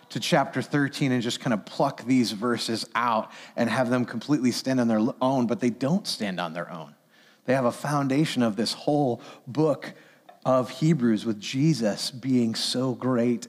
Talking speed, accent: 180 wpm, American